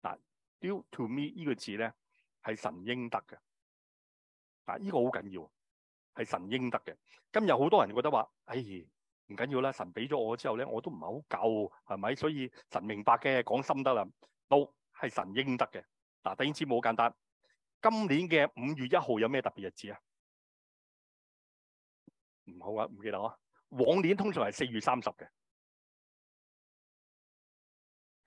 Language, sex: Chinese, male